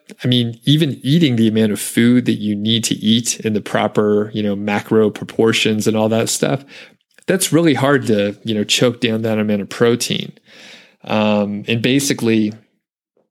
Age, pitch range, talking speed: 30-49, 105-120 Hz, 175 wpm